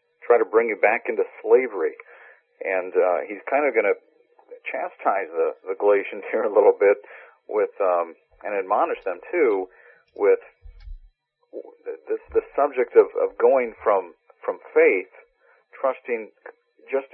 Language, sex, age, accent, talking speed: English, male, 40-59, American, 145 wpm